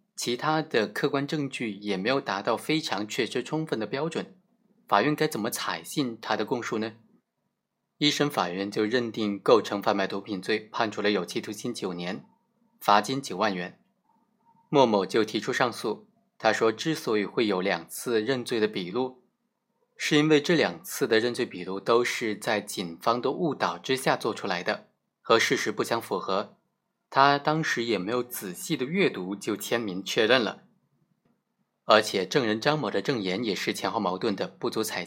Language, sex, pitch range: Chinese, male, 105-150 Hz